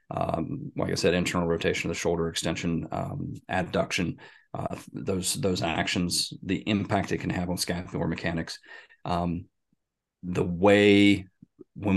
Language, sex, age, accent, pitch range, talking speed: English, male, 30-49, American, 90-105 Hz, 135 wpm